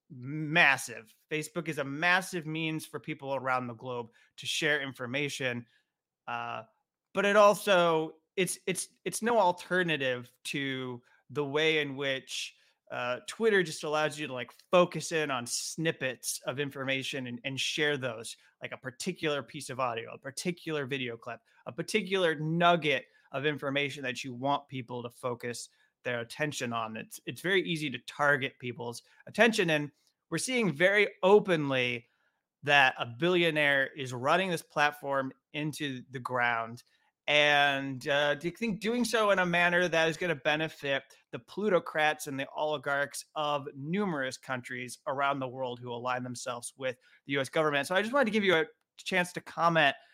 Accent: American